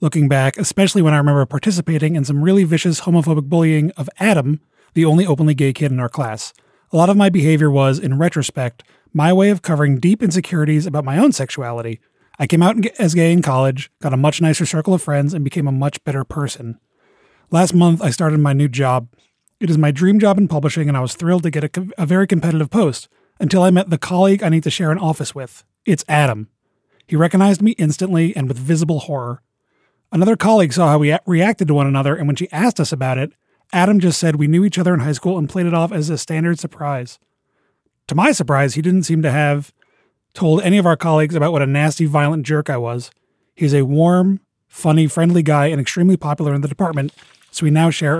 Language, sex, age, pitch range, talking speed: English, male, 30-49, 145-175 Hz, 225 wpm